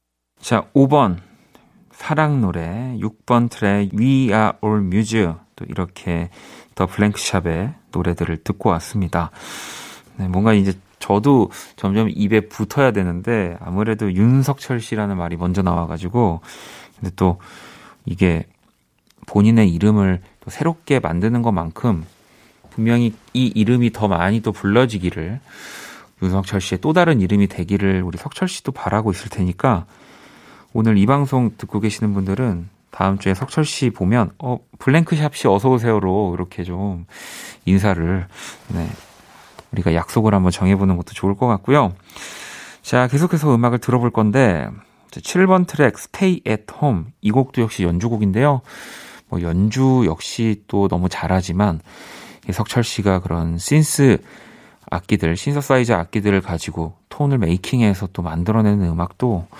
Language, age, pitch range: Korean, 30-49, 95-120 Hz